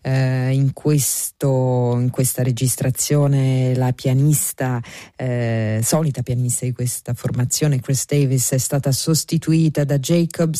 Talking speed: 115 wpm